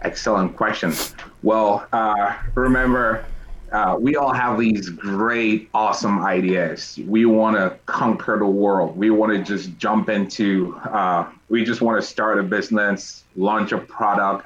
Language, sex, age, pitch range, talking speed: English, male, 30-49, 100-120 Hz, 150 wpm